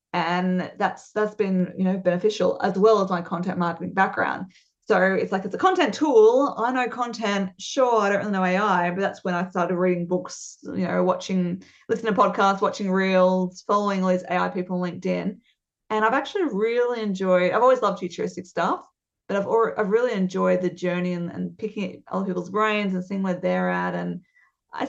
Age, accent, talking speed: 20-39, Australian, 200 wpm